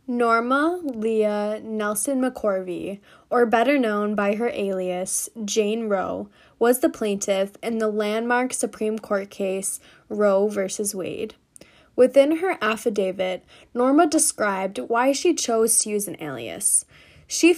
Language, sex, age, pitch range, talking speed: English, female, 10-29, 205-245 Hz, 125 wpm